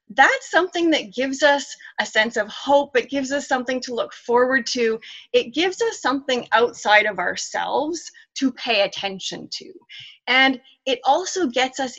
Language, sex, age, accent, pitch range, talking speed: English, female, 30-49, American, 230-290 Hz, 165 wpm